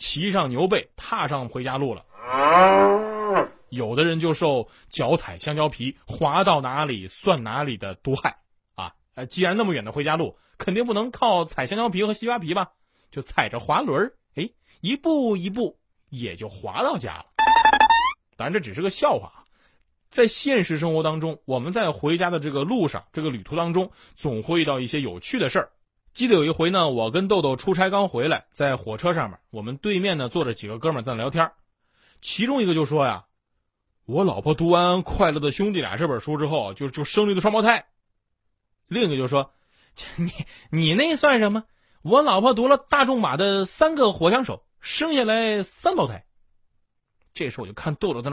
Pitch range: 130-210 Hz